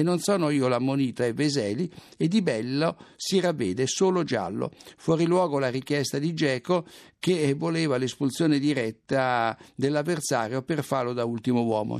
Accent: native